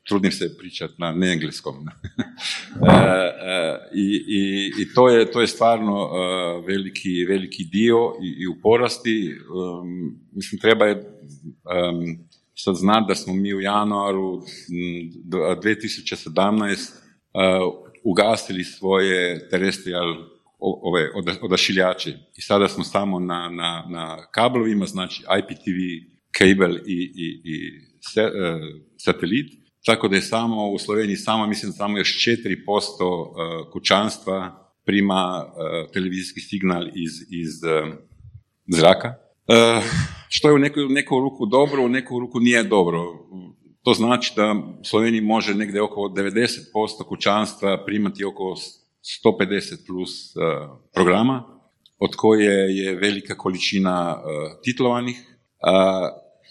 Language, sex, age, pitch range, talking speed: Croatian, male, 50-69, 90-110 Hz, 115 wpm